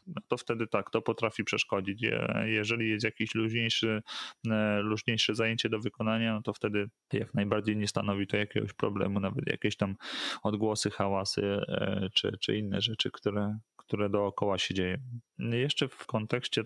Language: Polish